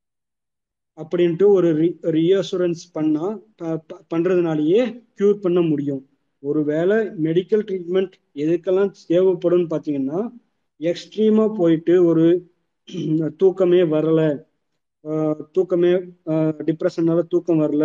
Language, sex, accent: Tamil, male, native